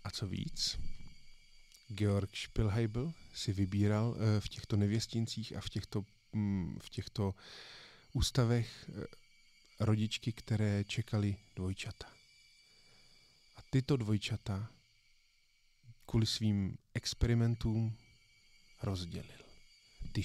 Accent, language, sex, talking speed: native, Czech, male, 85 wpm